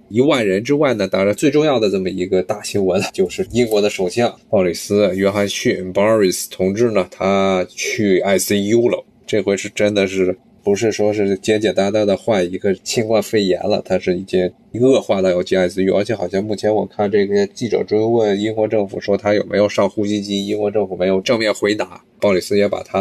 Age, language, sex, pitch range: 20-39, Chinese, male, 95-115 Hz